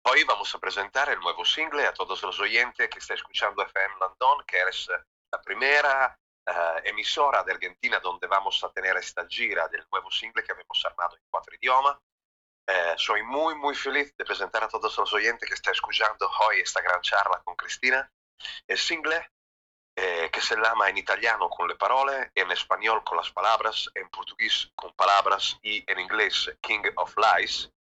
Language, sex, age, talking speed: Spanish, male, 30-49, 185 wpm